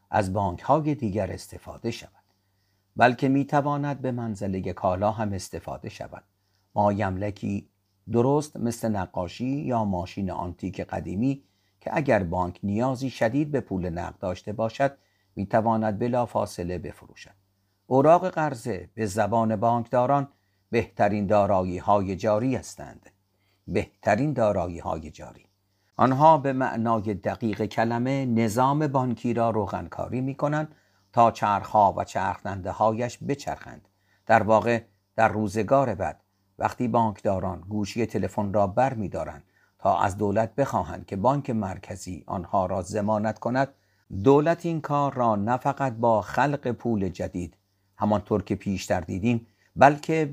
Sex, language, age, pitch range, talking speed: male, Persian, 50-69, 95-125 Hz, 125 wpm